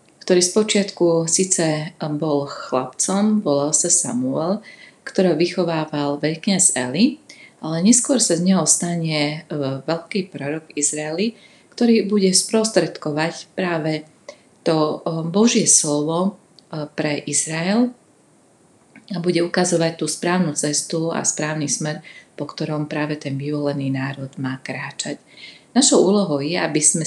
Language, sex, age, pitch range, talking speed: Slovak, female, 30-49, 150-190 Hz, 115 wpm